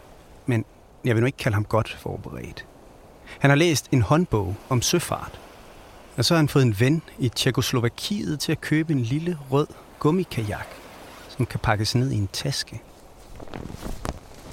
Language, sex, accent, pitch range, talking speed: Danish, male, native, 105-135 Hz, 160 wpm